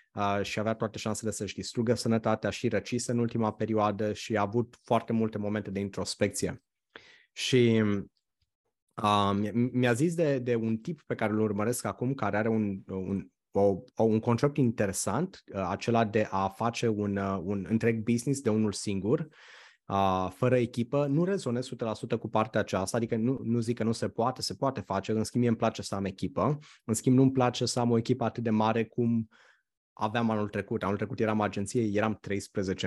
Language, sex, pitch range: Romanian, male, 105-120 Hz